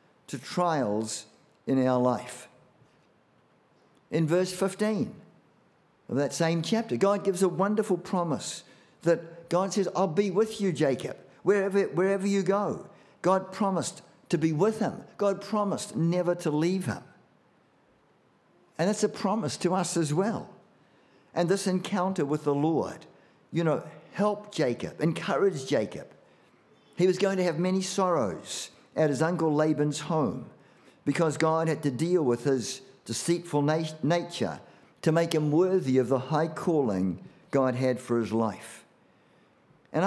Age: 50-69